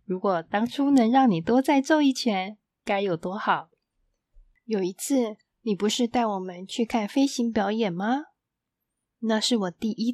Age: 20-39